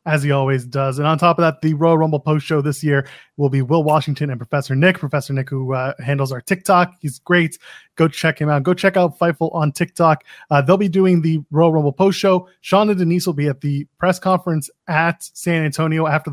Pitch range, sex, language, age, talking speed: 140-180 Hz, male, English, 20-39, 230 wpm